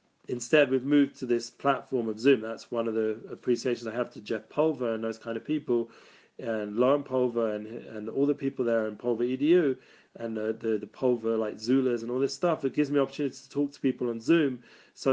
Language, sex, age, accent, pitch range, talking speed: English, male, 40-59, British, 115-135 Hz, 225 wpm